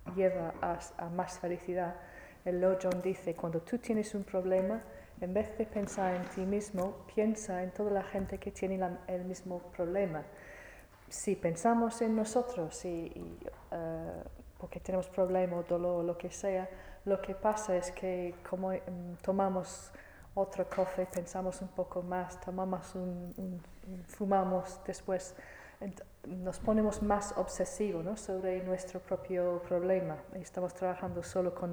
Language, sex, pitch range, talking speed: Italian, female, 175-195 Hz, 155 wpm